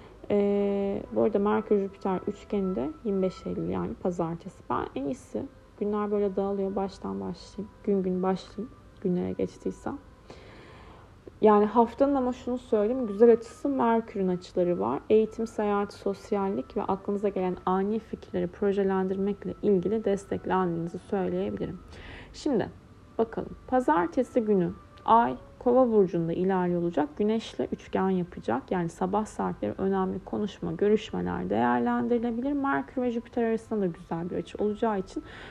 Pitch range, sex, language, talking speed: 180-215 Hz, female, Turkish, 125 wpm